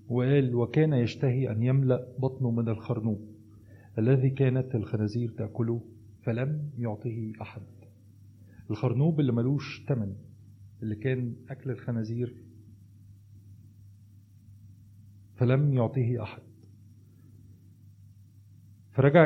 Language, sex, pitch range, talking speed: Arabic, male, 105-125 Hz, 85 wpm